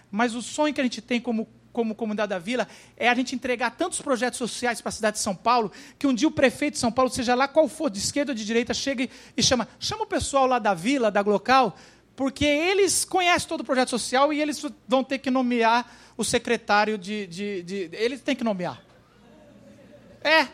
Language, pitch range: Portuguese, 235-290 Hz